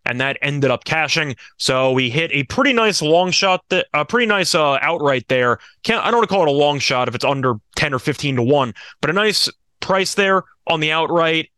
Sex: male